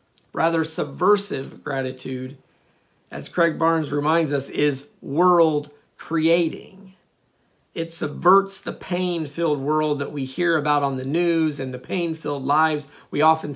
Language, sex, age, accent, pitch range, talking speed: English, male, 50-69, American, 145-185 Hz, 125 wpm